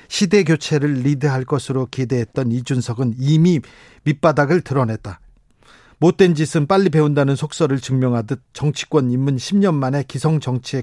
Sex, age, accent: male, 40-59, native